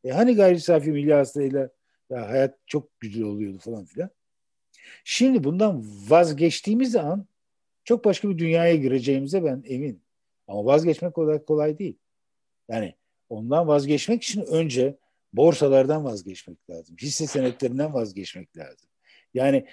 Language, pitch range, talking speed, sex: Turkish, 130-180 Hz, 120 wpm, male